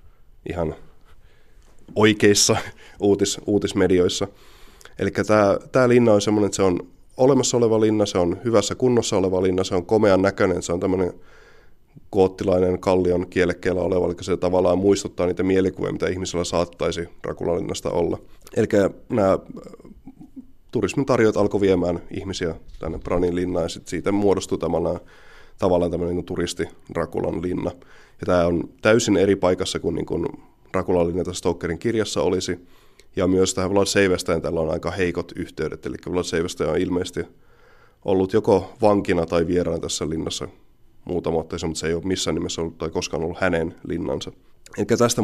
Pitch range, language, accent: 90-105 Hz, Finnish, native